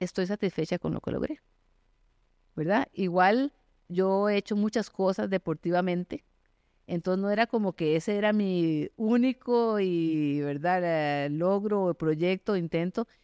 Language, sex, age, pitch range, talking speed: Spanish, female, 40-59, 160-190 Hz, 125 wpm